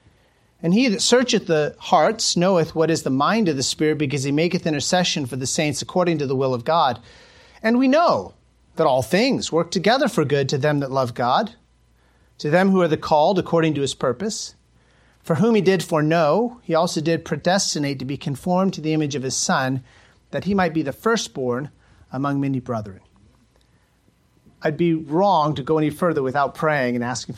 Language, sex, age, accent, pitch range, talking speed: English, male, 40-59, American, 130-180 Hz, 195 wpm